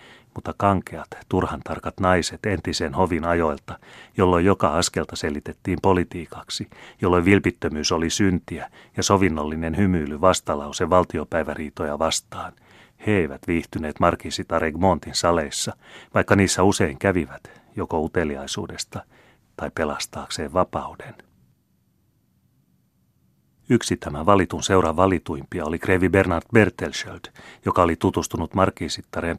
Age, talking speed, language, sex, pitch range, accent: 30-49, 105 wpm, Finnish, male, 80-95 Hz, native